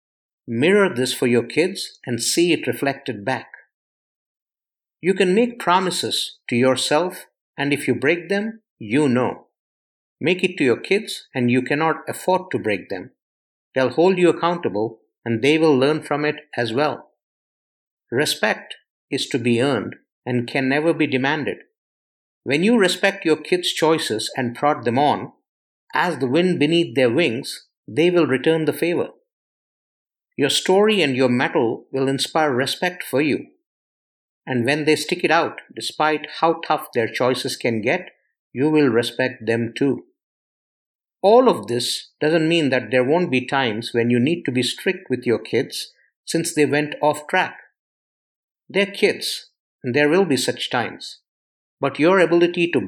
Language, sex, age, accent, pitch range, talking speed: English, male, 50-69, Indian, 120-170 Hz, 160 wpm